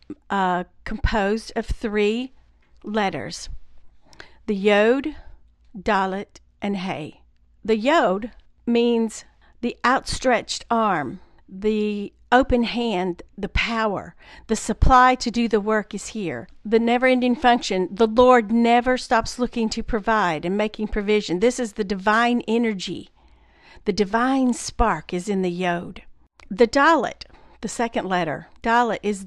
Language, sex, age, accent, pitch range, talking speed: English, female, 50-69, American, 190-235 Hz, 125 wpm